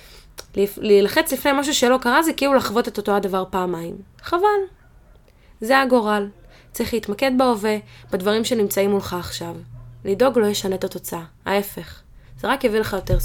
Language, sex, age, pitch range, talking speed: Hebrew, female, 20-39, 185-250 Hz, 155 wpm